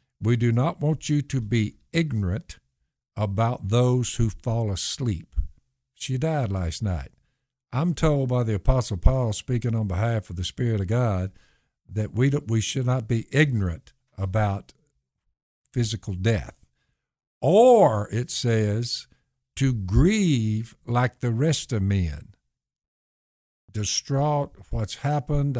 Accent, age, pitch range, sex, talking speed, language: American, 60-79, 105-140 Hz, male, 130 wpm, English